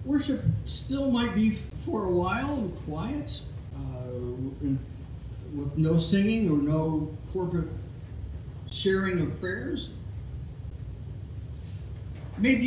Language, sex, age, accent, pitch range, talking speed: English, male, 50-69, American, 115-160 Hz, 95 wpm